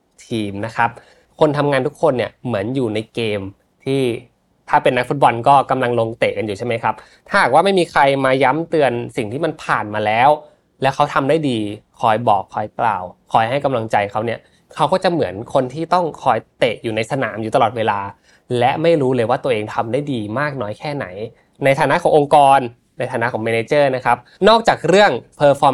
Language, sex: Thai, male